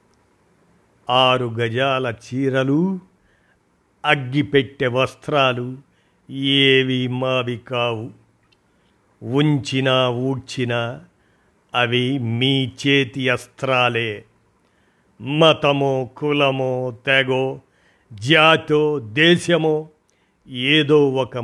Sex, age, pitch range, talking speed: male, 50-69, 125-150 Hz, 60 wpm